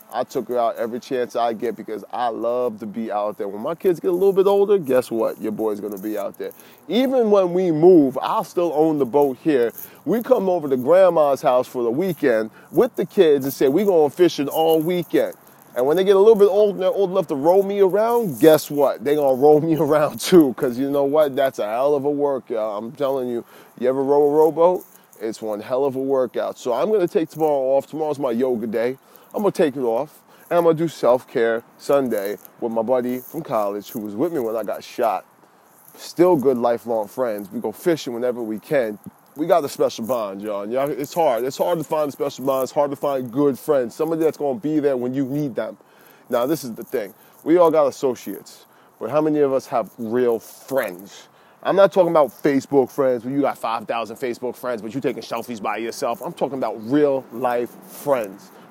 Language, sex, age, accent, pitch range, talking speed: English, male, 30-49, American, 125-165 Hz, 235 wpm